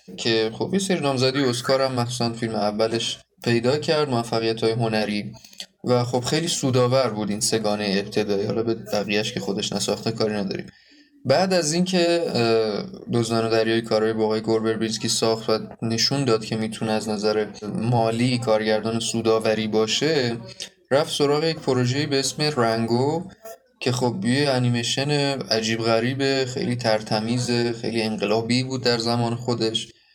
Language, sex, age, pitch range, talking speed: Persian, male, 20-39, 110-140 Hz, 145 wpm